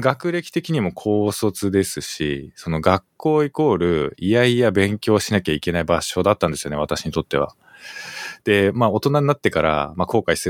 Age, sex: 20-39, male